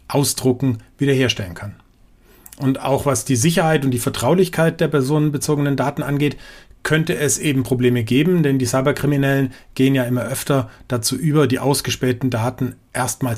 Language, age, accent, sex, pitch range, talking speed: German, 40-59, German, male, 120-145 Hz, 150 wpm